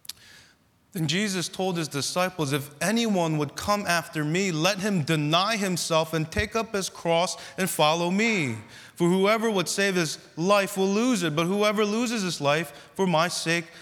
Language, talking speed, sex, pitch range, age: English, 175 wpm, male, 155-200 Hz, 20-39